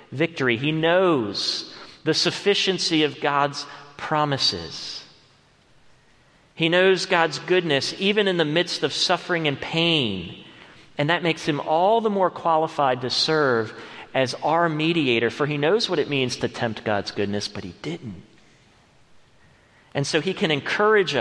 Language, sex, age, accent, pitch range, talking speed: English, male, 40-59, American, 125-165 Hz, 145 wpm